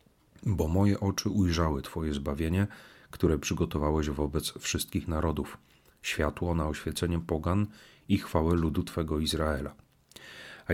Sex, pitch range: male, 75-95 Hz